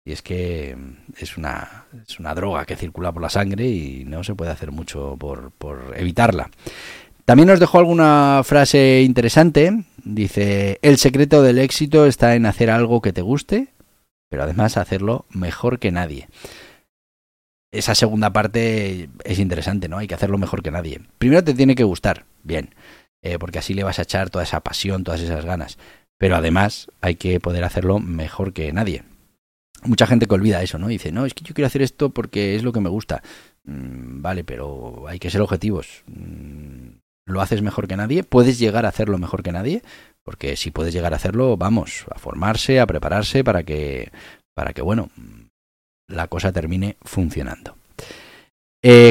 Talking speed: 180 wpm